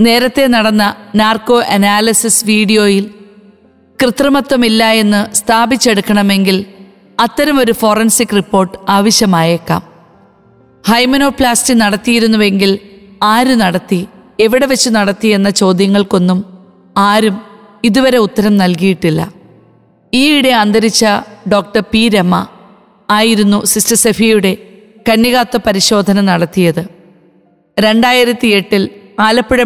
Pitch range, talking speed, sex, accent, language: 195-225 Hz, 75 wpm, female, native, Malayalam